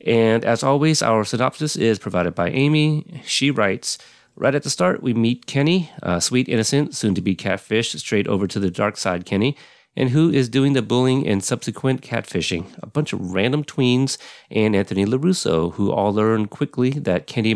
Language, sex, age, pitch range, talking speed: English, male, 30-49, 100-130 Hz, 180 wpm